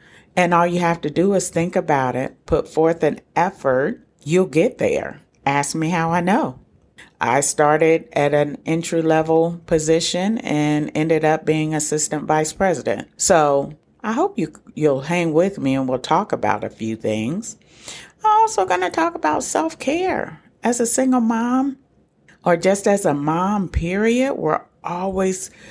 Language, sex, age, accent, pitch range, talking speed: English, female, 40-59, American, 145-190 Hz, 160 wpm